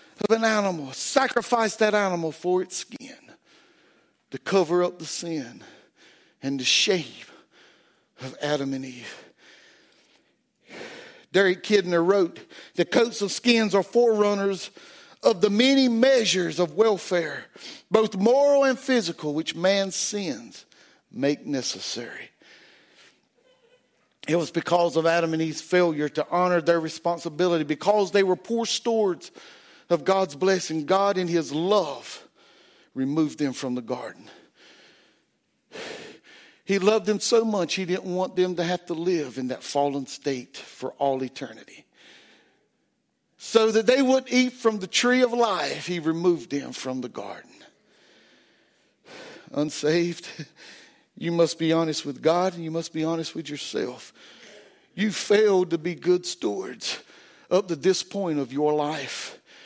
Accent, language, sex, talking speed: American, English, male, 140 wpm